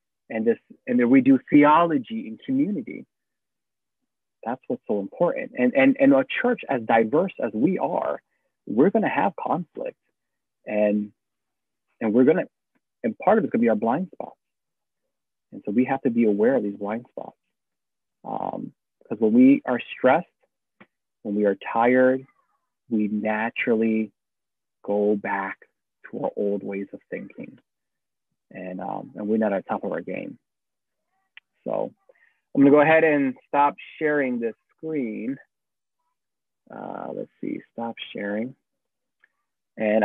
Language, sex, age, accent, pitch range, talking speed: English, male, 30-49, American, 110-160 Hz, 145 wpm